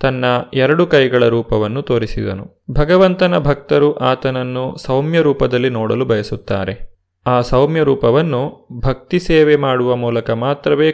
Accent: native